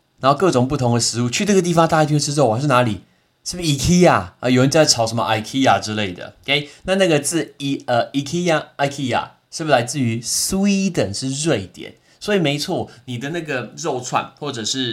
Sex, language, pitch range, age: male, Chinese, 110-150 Hz, 20-39